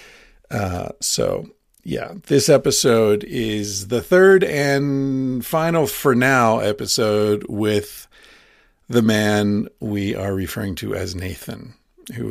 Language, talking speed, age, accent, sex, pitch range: English, 110 wpm, 50-69, American, male, 100-120 Hz